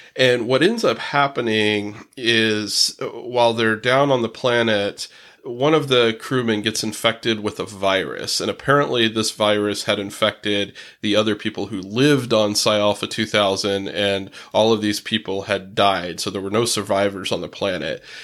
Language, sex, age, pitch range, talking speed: English, male, 30-49, 105-120 Hz, 165 wpm